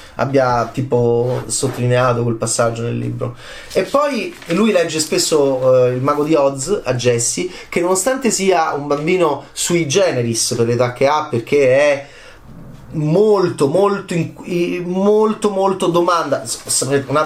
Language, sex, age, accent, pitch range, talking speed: Italian, male, 30-49, native, 120-170 Hz, 130 wpm